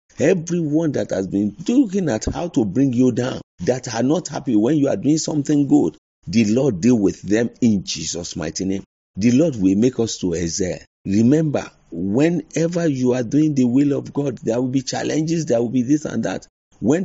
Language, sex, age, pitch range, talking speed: English, male, 40-59, 95-135 Hz, 200 wpm